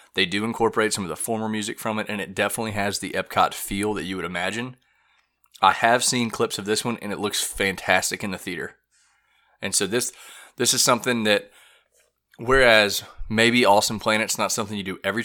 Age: 20-39